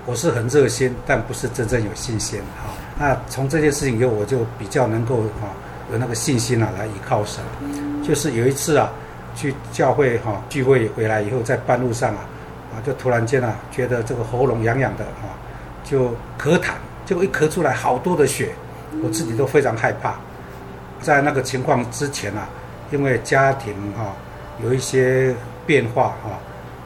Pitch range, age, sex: 115-135 Hz, 60-79, male